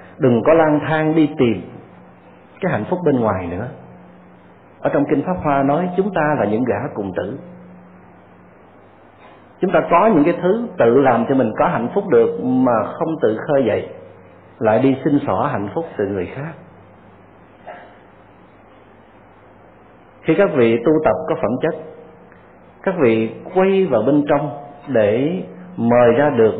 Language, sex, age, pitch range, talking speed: Vietnamese, male, 50-69, 105-160 Hz, 160 wpm